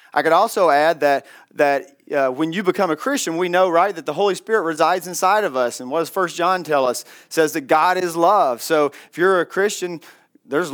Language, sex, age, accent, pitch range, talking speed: English, male, 40-59, American, 150-185 Hz, 235 wpm